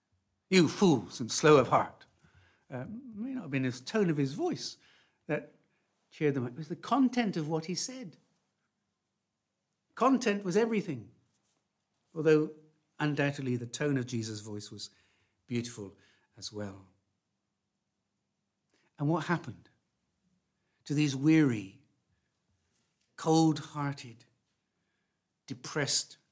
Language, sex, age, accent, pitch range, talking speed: English, male, 60-79, British, 105-175 Hz, 115 wpm